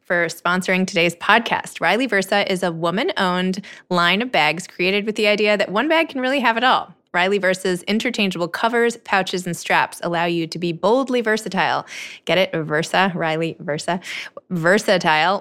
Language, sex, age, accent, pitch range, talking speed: English, female, 20-39, American, 170-205 Hz, 170 wpm